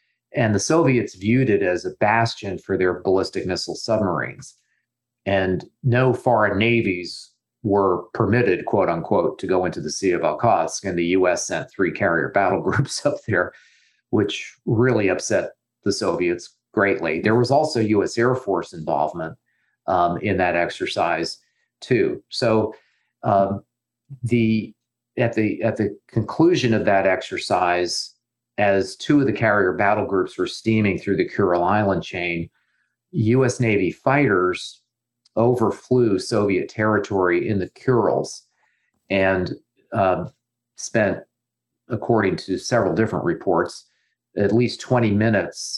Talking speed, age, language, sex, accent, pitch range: 135 wpm, 40-59, English, male, American, 100-120 Hz